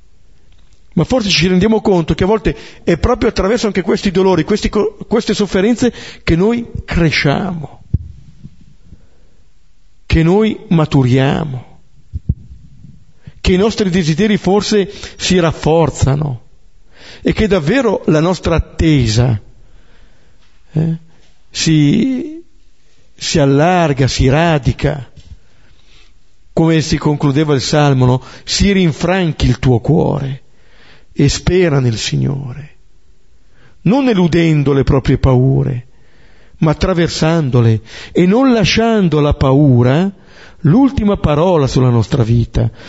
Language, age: Italian, 50-69